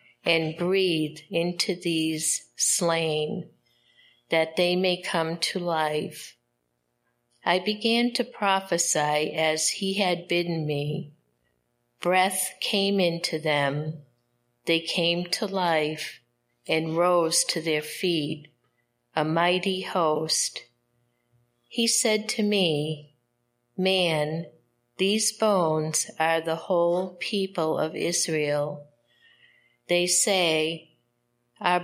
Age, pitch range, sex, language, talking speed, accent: 50-69, 145-180 Hz, female, English, 100 wpm, American